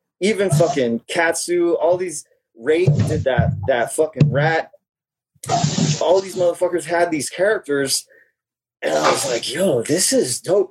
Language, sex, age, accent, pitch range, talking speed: English, male, 30-49, American, 130-175 Hz, 135 wpm